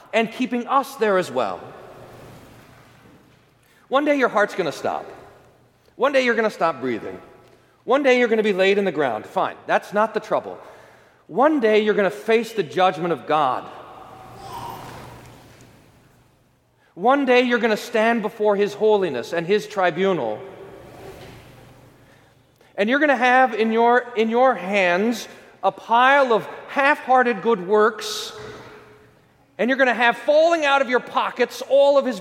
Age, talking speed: 40-59, 160 wpm